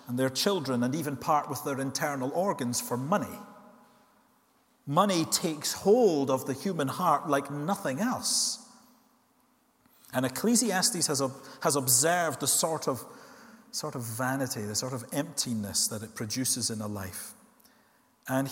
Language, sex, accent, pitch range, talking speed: English, male, British, 130-200 Hz, 140 wpm